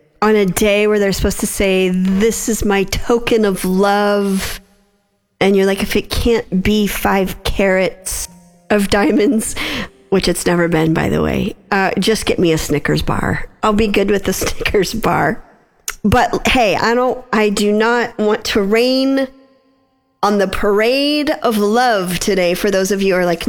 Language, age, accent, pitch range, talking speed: English, 40-59, American, 180-220 Hz, 175 wpm